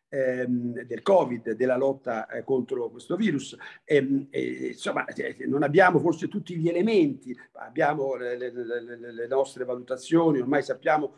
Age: 50-69